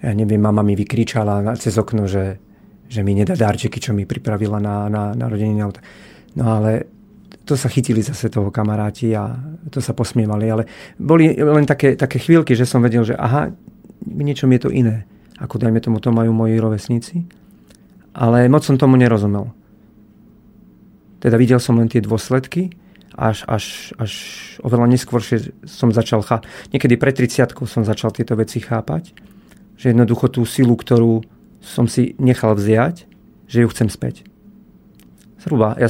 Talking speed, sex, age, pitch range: 160 wpm, male, 40-59, 110-130 Hz